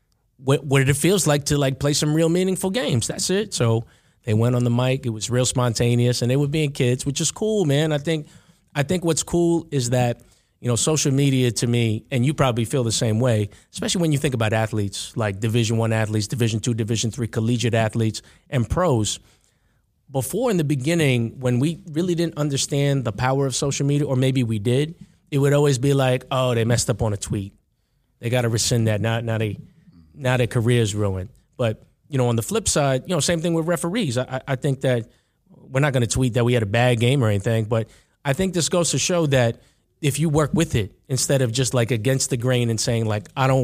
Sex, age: male, 30-49